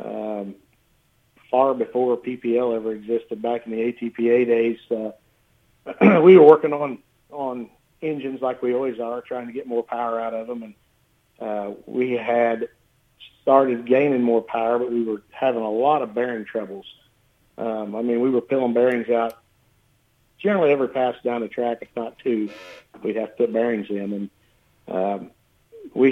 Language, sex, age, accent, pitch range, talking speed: English, male, 50-69, American, 110-120 Hz, 170 wpm